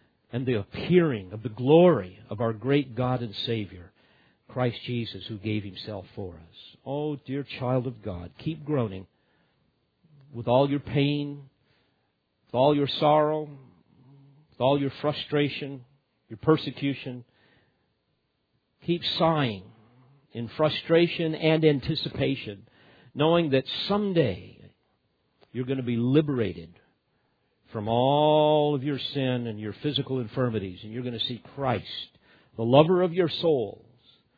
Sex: male